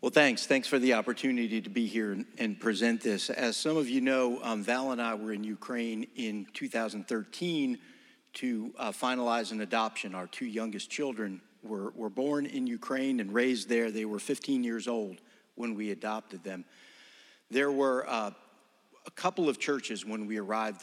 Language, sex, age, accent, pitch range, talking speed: English, male, 50-69, American, 110-145 Hz, 180 wpm